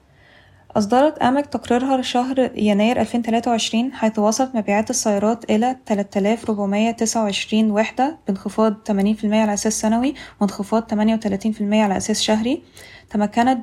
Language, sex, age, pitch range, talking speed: Arabic, female, 10-29, 210-245 Hz, 105 wpm